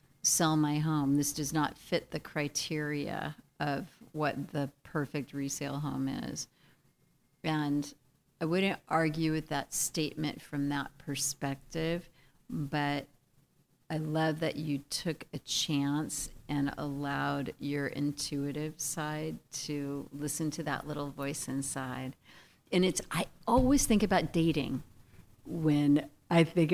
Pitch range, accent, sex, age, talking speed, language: 145-180 Hz, American, female, 50-69, 125 wpm, English